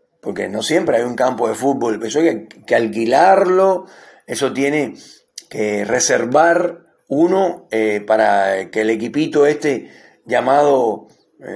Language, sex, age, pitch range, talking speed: Spanish, male, 40-59, 125-180 Hz, 140 wpm